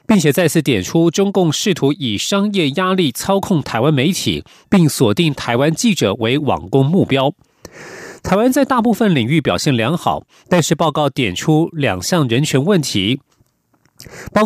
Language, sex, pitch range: Chinese, male, 140-190 Hz